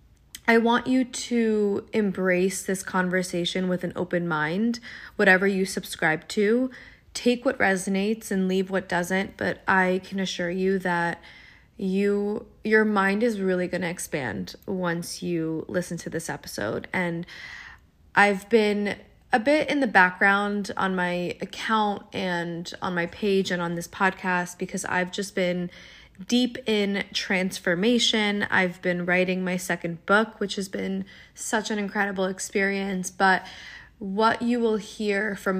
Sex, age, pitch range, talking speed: female, 20-39, 180-205 Hz, 145 wpm